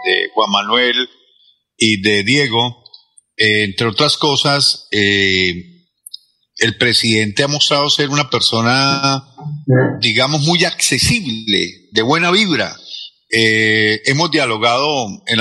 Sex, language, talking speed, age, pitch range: male, Spanish, 110 wpm, 40-59, 125-175 Hz